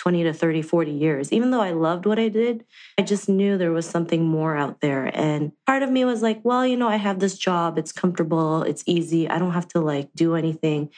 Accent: American